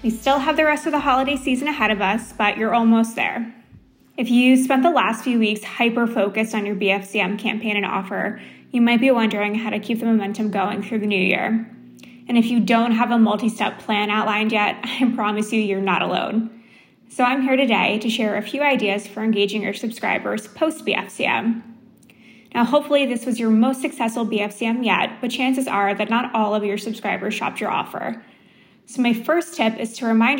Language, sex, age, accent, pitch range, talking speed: English, female, 20-39, American, 215-250 Hz, 205 wpm